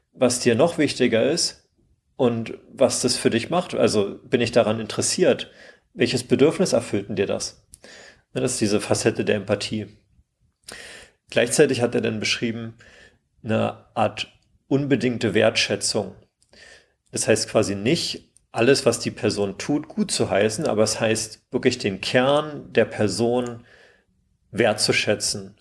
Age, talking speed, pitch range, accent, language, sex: 40-59, 135 wpm, 105-125 Hz, German, German, male